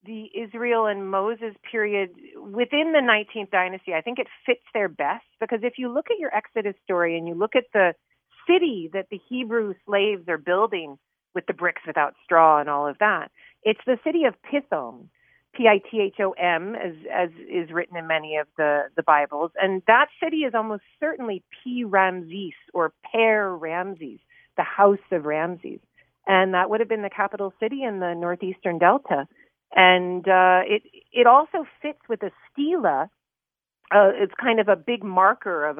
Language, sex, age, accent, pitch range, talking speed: English, female, 40-59, American, 180-235 Hz, 175 wpm